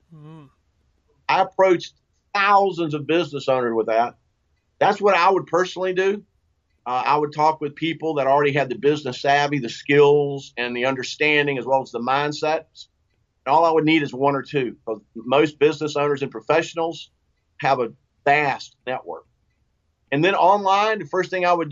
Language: English